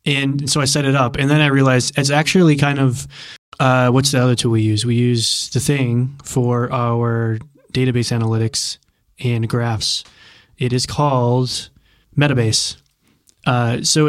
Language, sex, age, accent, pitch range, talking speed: English, male, 20-39, American, 120-140 Hz, 160 wpm